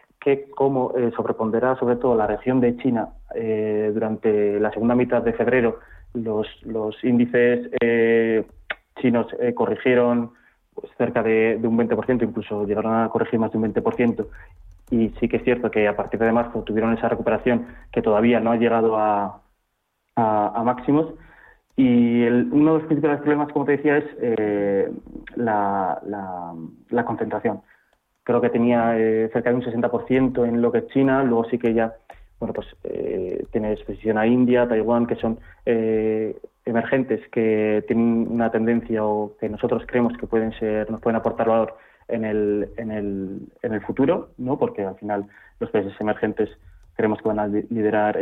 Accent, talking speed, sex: Spanish, 170 wpm, male